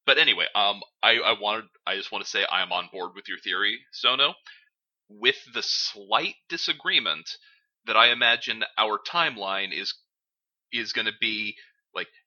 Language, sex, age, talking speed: English, male, 30-49, 165 wpm